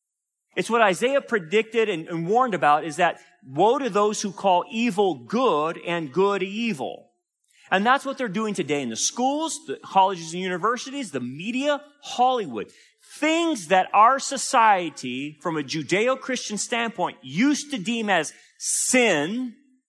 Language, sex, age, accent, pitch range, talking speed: English, male, 40-59, American, 170-260 Hz, 145 wpm